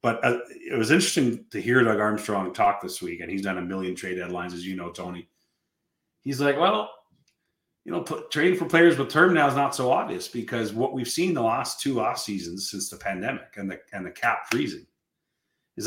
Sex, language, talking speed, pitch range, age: male, English, 210 wpm, 105-130 Hz, 40-59